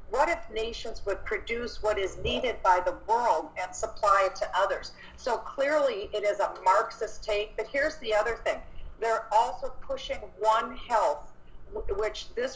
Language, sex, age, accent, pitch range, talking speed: English, female, 50-69, American, 210-275 Hz, 165 wpm